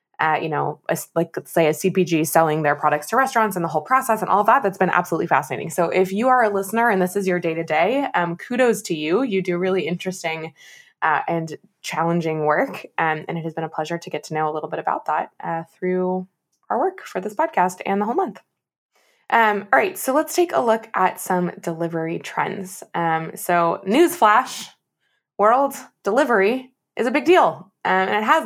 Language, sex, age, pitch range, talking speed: English, female, 20-39, 160-210 Hz, 205 wpm